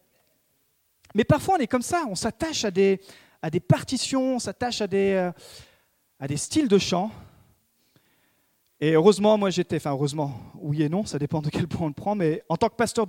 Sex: male